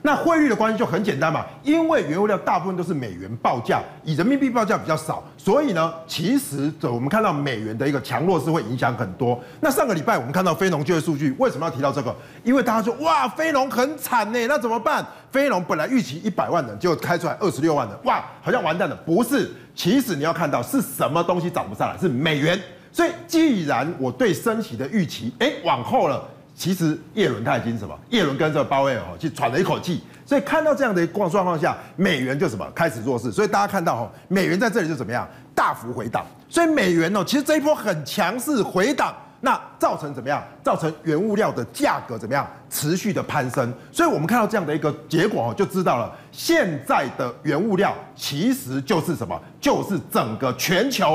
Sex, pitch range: male, 145-230 Hz